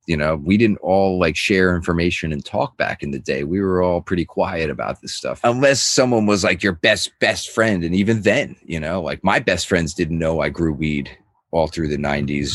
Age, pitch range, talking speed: 30-49, 80-100 Hz, 230 wpm